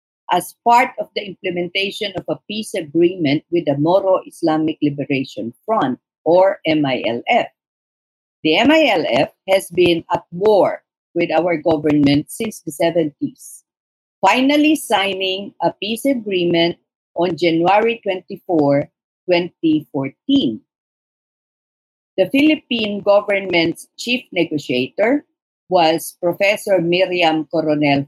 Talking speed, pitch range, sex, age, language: 100 wpm, 155-220 Hz, female, 50-69, English